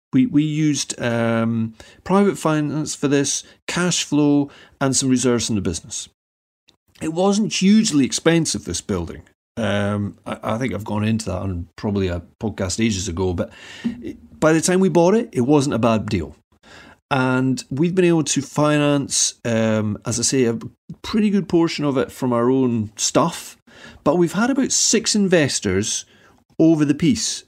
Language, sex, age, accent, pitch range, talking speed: English, male, 40-59, British, 120-175 Hz, 170 wpm